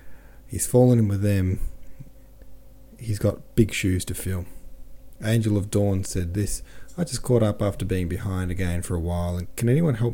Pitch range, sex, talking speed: 90-120 Hz, male, 185 wpm